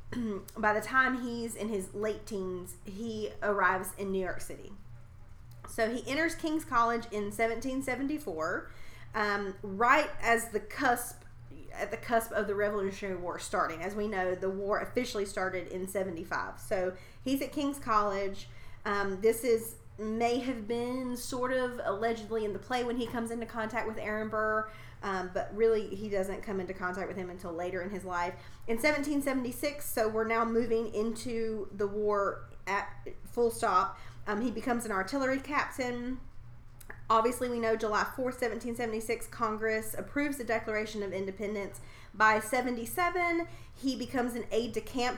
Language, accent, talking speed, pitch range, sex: English, American, 160 wpm, 195-240 Hz, female